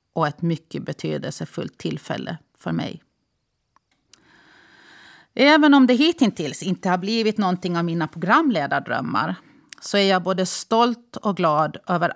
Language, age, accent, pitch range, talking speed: Swedish, 30-49, native, 165-215 Hz, 130 wpm